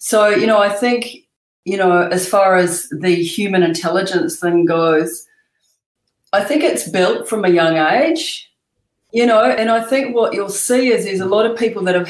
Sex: female